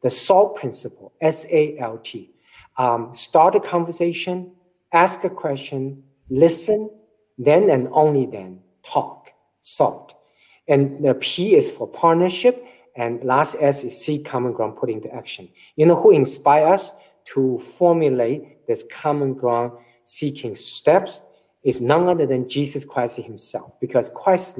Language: English